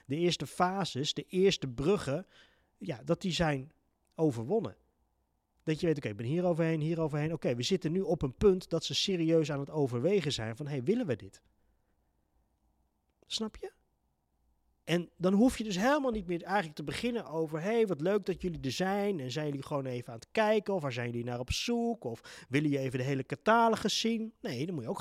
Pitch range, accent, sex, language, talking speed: 130-200 Hz, Dutch, male, Dutch, 225 wpm